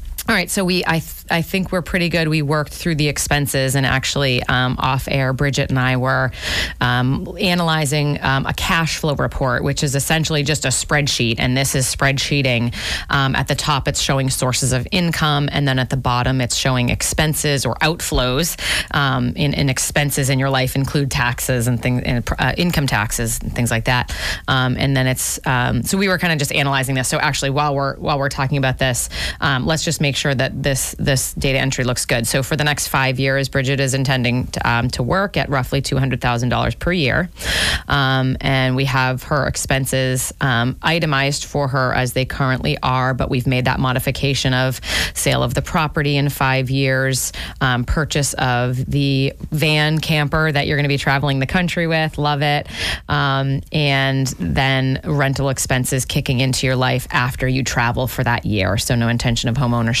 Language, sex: English, female